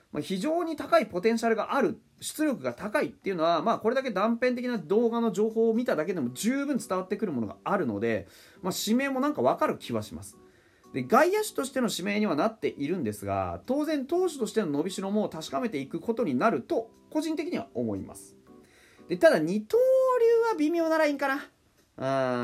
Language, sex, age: Japanese, male, 30-49